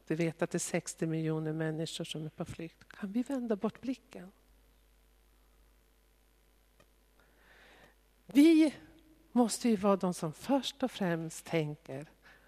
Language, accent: Swedish, native